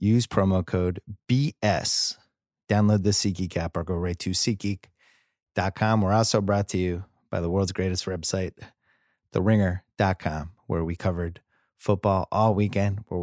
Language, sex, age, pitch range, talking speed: English, male, 30-49, 95-120 Hz, 140 wpm